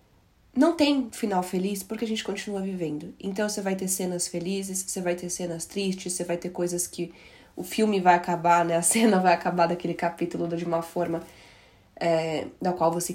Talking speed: 190 wpm